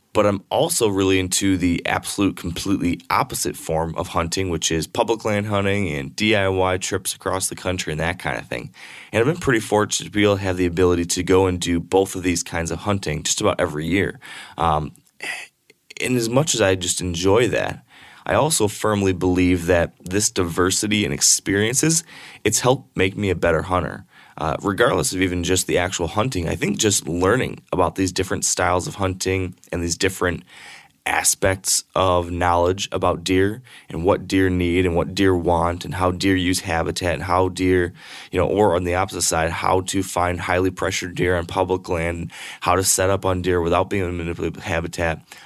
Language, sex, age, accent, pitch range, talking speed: English, male, 20-39, American, 85-95 Hz, 195 wpm